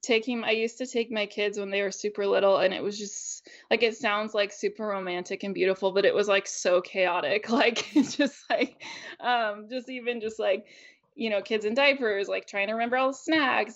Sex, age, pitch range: female, 20-39, 190-230 Hz